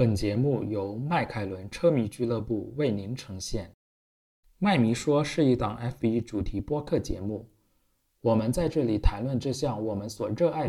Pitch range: 105-145 Hz